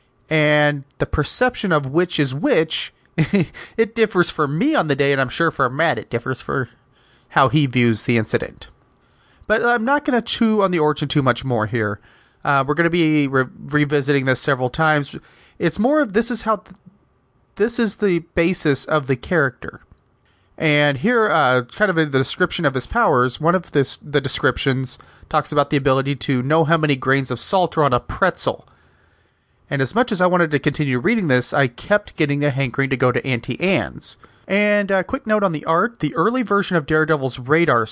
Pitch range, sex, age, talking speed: 135-180 Hz, male, 30-49, 200 wpm